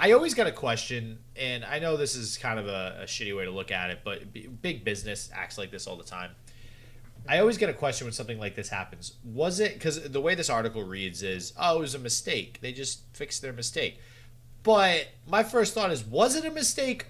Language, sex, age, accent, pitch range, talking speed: English, male, 30-49, American, 115-140 Hz, 235 wpm